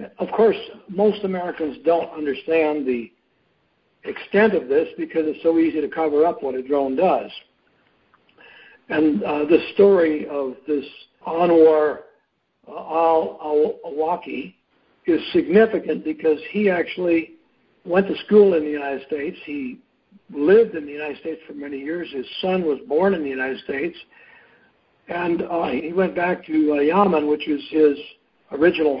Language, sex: English, male